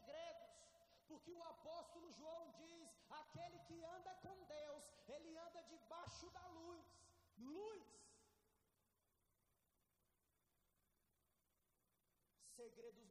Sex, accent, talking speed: male, Brazilian, 80 wpm